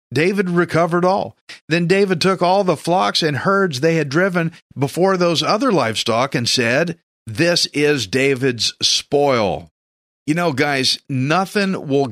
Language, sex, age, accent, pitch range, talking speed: English, male, 50-69, American, 115-165 Hz, 145 wpm